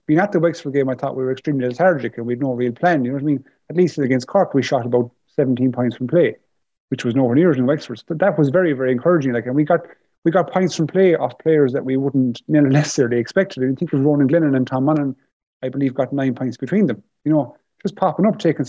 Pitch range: 130-165 Hz